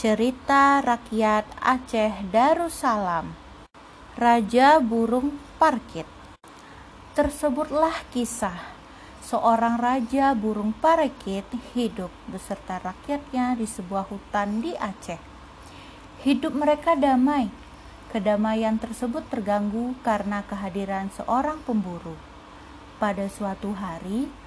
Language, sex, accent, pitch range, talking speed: Indonesian, female, native, 205-280 Hz, 85 wpm